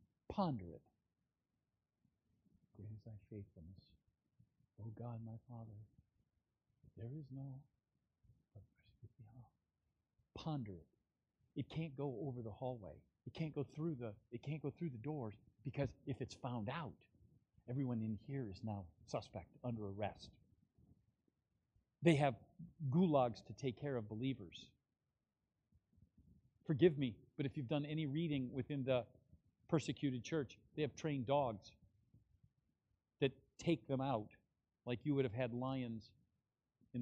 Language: English